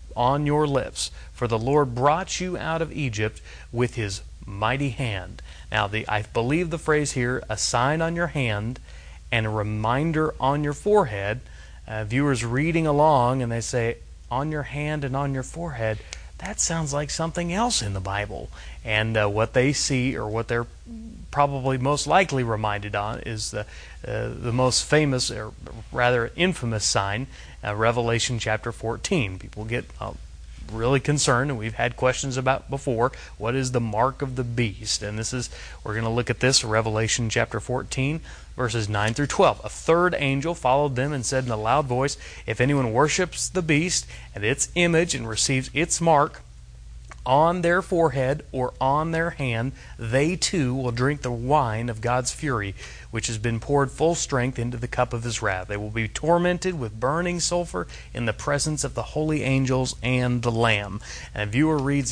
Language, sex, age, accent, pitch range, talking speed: English, male, 30-49, American, 110-145 Hz, 180 wpm